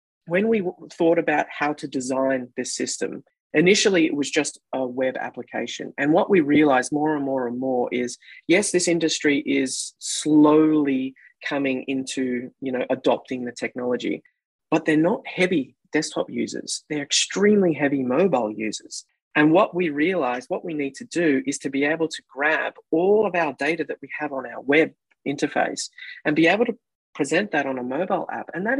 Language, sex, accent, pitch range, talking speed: English, female, Australian, 135-170 Hz, 180 wpm